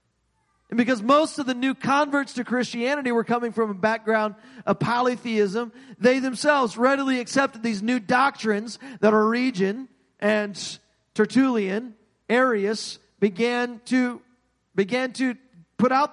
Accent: American